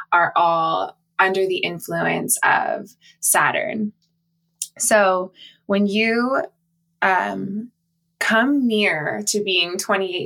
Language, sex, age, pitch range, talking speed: English, female, 20-39, 170-215 Hz, 95 wpm